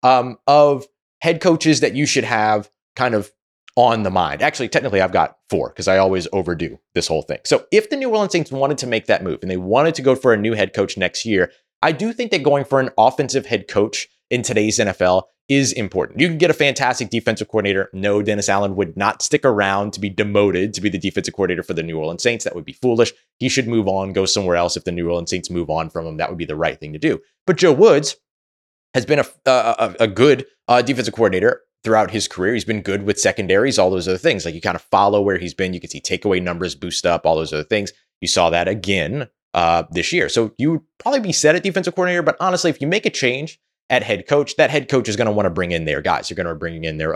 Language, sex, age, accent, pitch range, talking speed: English, male, 30-49, American, 95-145 Hz, 260 wpm